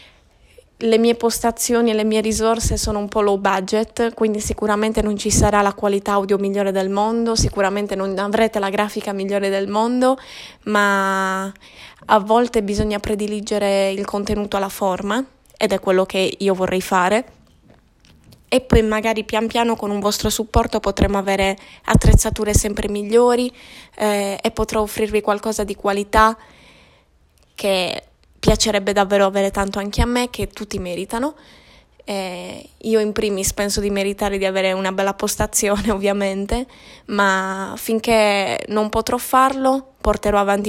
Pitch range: 195-220 Hz